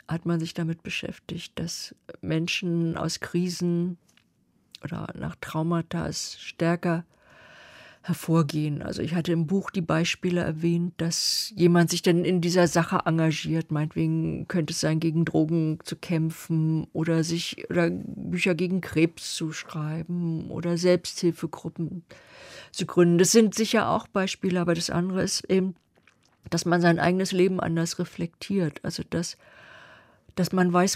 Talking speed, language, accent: 140 wpm, German, German